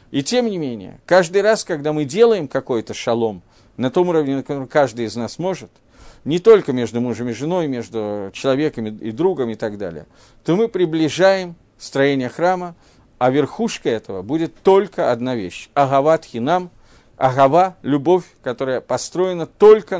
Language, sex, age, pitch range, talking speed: Russian, male, 50-69, 115-180 Hz, 160 wpm